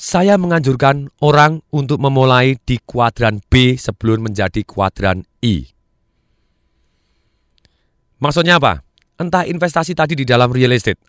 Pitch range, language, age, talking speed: 110-150 Hz, Indonesian, 30-49, 115 wpm